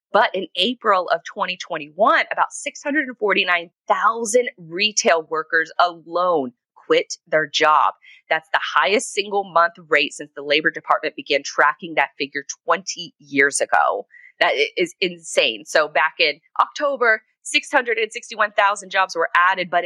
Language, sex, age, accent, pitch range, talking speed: English, female, 30-49, American, 155-240 Hz, 125 wpm